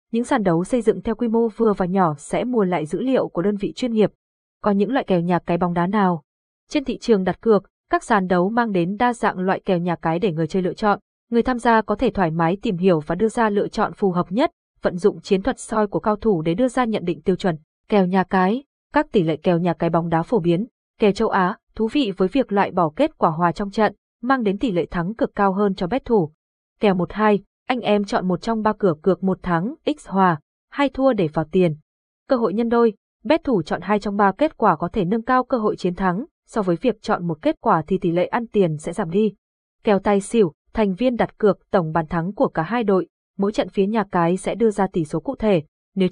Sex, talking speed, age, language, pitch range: female, 265 wpm, 20-39, Vietnamese, 180-230 Hz